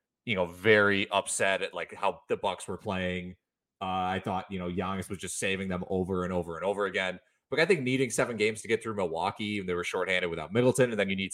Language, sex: English, male